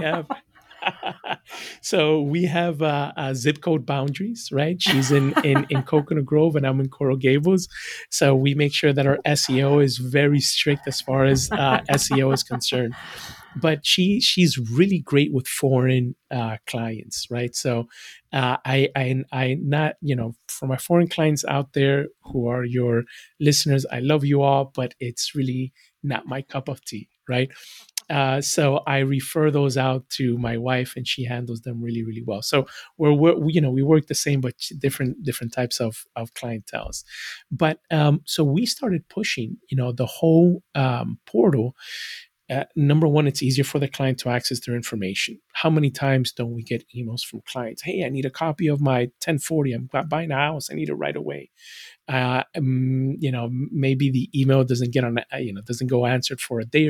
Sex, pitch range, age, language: male, 125-150 Hz, 30-49, English